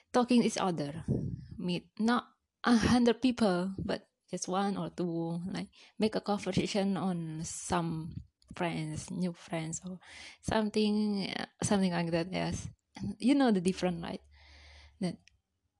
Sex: female